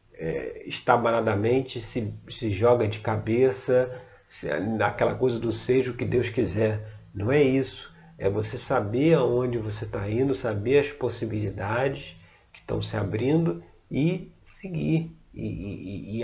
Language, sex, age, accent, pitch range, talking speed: Portuguese, male, 40-59, Brazilian, 105-125 Hz, 135 wpm